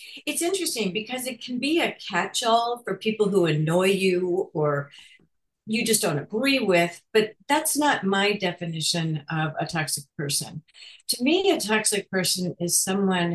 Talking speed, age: 155 wpm, 50-69